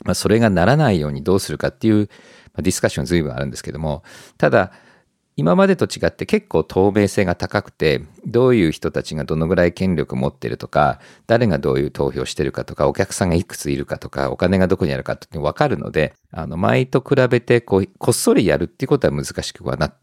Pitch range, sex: 80-115 Hz, male